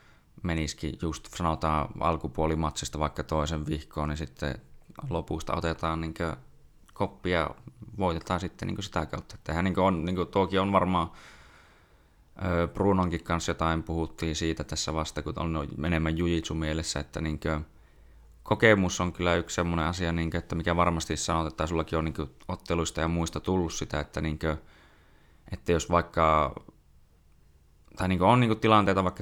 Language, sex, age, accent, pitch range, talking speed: Finnish, male, 20-39, native, 80-85 Hz, 170 wpm